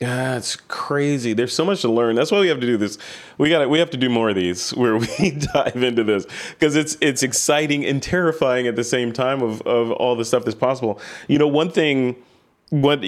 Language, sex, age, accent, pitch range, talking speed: English, male, 30-49, American, 105-125 Hz, 235 wpm